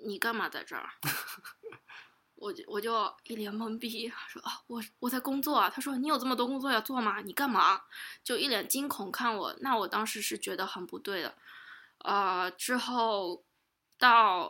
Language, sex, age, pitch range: Chinese, female, 20-39, 195-240 Hz